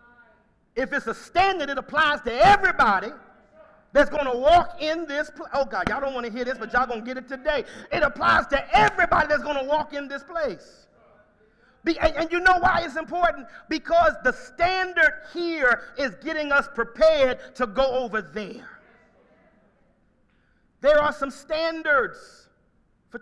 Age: 40-59